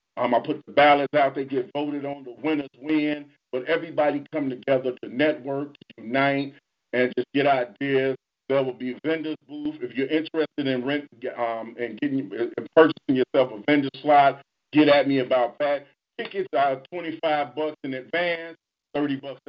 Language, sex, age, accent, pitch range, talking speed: English, male, 40-59, American, 125-155 Hz, 175 wpm